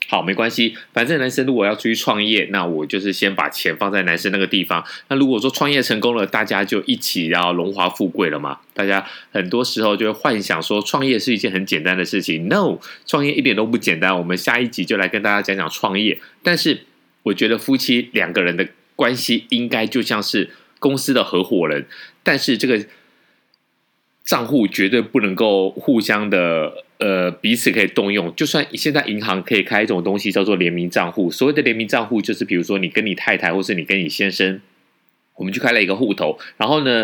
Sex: male